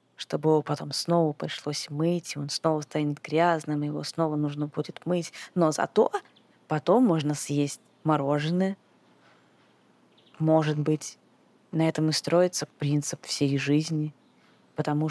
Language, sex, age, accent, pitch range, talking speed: Russian, female, 20-39, native, 160-215 Hz, 125 wpm